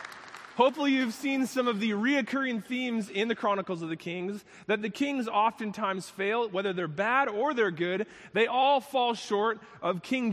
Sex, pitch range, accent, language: male, 185-240 Hz, American, English